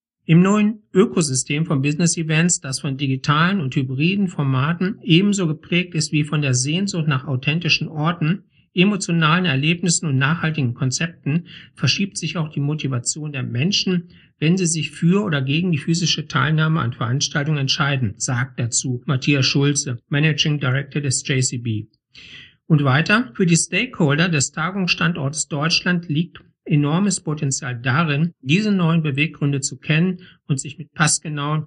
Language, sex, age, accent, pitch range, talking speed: German, male, 50-69, German, 135-170 Hz, 140 wpm